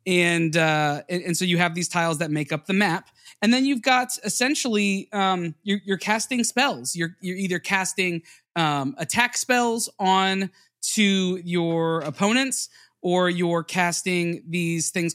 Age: 20-39